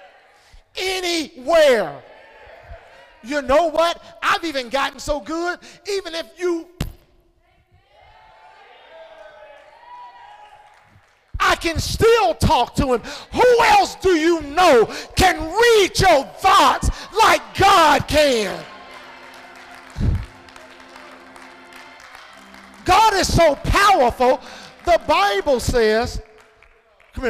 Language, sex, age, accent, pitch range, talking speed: English, male, 40-59, American, 245-375 Hz, 85 wpm